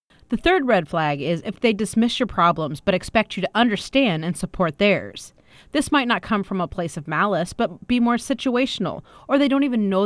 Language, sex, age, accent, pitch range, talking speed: English, female, 30-49, American, 165-225 Hz, 215 wpm